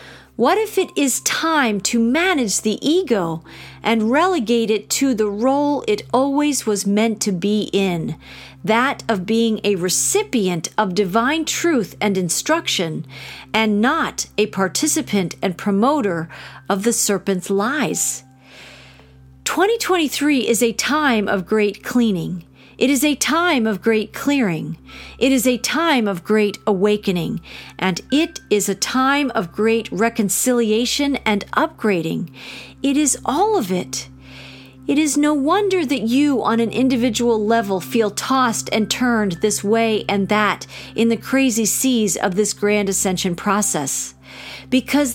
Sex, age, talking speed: female, 40-59, 140 wpm